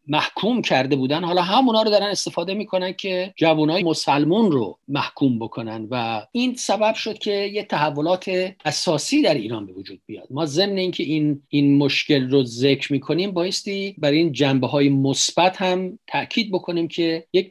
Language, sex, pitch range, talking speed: Persian, male, 140-180 Hz, 170 wpm